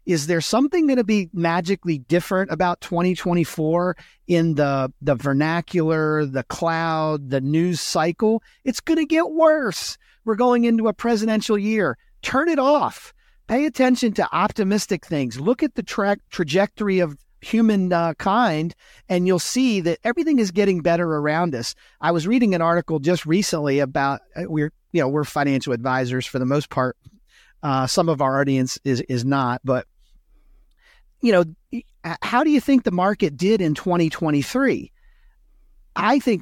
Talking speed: 160 wpm